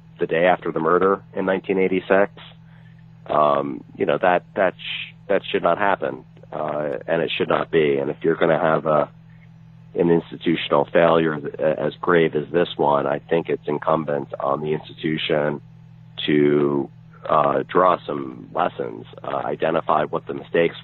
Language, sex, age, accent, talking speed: English, male, 40-59, American, 160 wpm